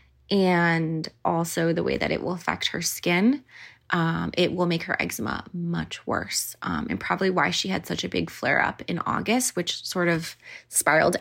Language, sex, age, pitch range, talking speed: English, female, 20-39, 170-200 Hz, 185 wpm